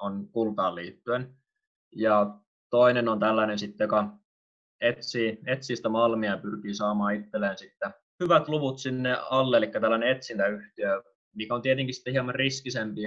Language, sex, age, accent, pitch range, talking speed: Finnish, male, 20-39, native, 105-120 Hz, 140 wpm